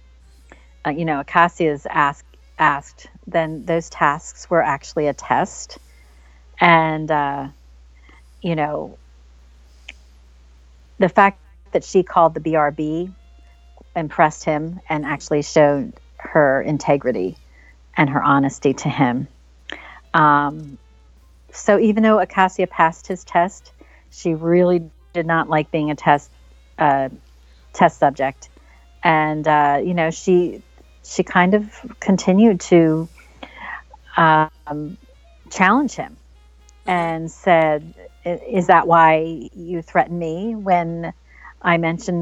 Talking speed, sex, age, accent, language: 110 wpm, female, 40-59, American, English